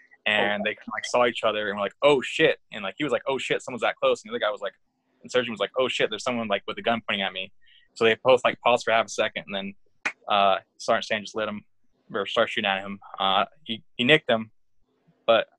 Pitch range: 105-120 Hz